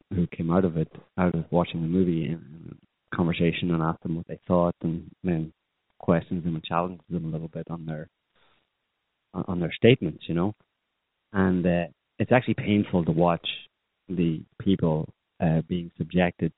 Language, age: English, 30-49